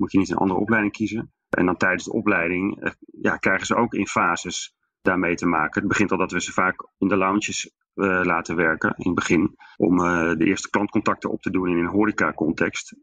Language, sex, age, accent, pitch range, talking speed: English, male, 30-49, Dutch, 90-105 Hz, 225 wpm